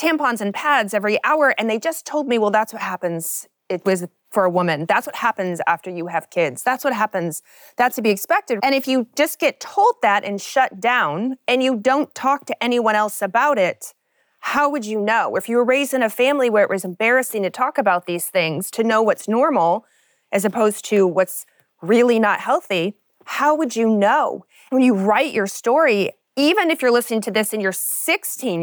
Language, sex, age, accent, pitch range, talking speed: English, female, 30-49, American, 195-270 Hz, 210 wpm